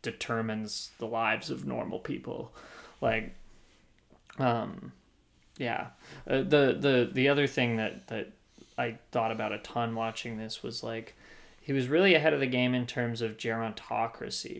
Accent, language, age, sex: American, English, 20-39, male